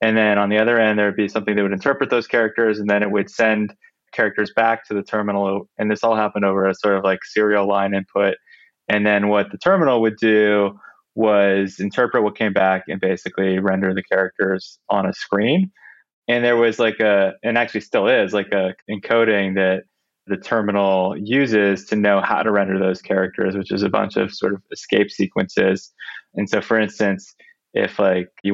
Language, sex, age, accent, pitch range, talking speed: English, male, 20-39, American, 100-110 Hz, 200 wpm